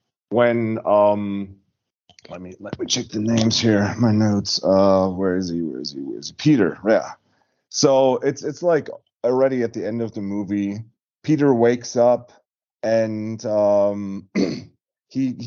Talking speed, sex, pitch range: 160 wpm, male, 100-120 Hz